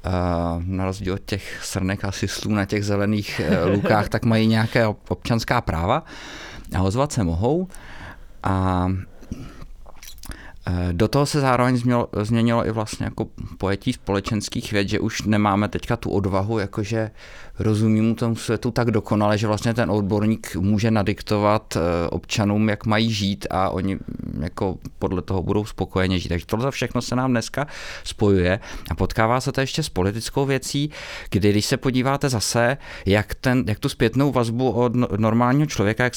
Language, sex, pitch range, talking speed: English, male, 100-120 Hz, 155 wpm